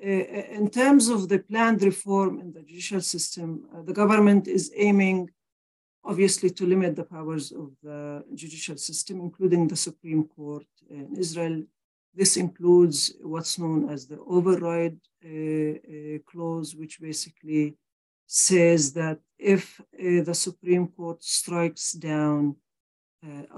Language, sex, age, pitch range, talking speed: English, female, 50-69, 155-185 Hz, 135 wpm